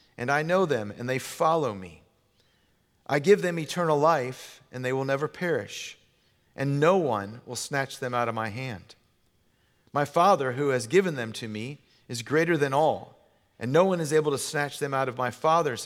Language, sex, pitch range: English, male, 120-165 Hz